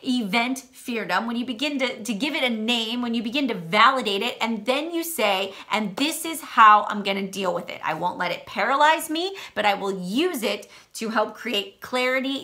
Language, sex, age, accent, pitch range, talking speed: English, female, 30-49, American, 205-260 Hz, 215 wpm